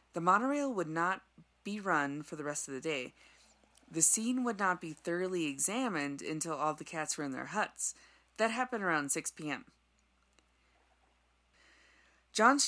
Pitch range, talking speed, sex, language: 145-200 Hz, 155 wpm, female, English